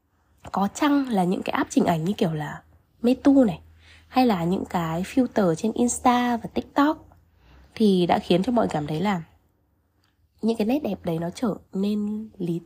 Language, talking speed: Vietnamese, 185 wpm